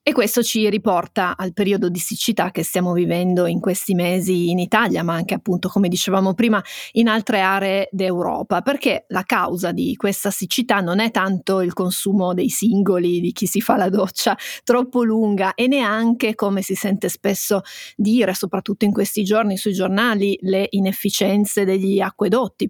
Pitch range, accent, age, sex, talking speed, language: 195-230 Hz, native, 30-49, female, 170 wpm, Italian